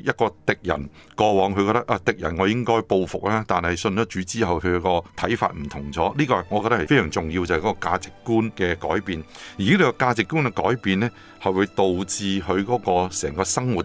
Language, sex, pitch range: Chinese, male, 85-110 Hz